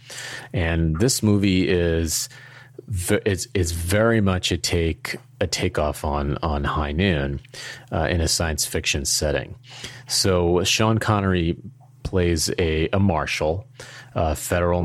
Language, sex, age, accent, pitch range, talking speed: English, male, 30-49, American, 80-100 Hz, 120 wpm